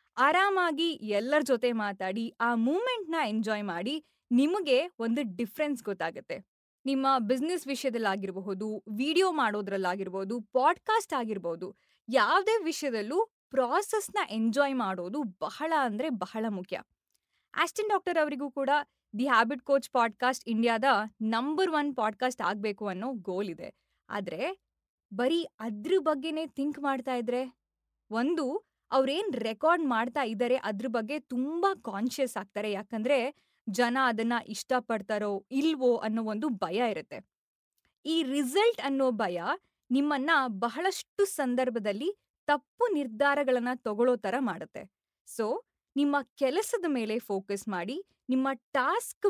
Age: 20-39